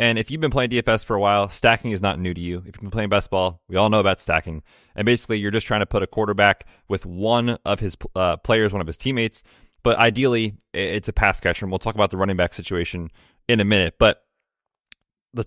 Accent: American